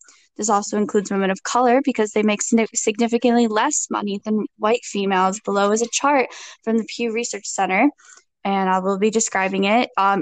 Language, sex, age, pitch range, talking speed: English, female, 10-29, 195-230 Hz, 180 wpm